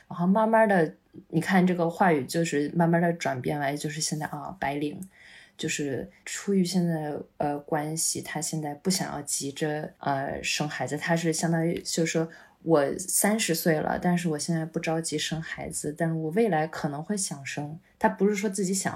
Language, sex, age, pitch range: Chinese, female, 20-39, 155-185 Hz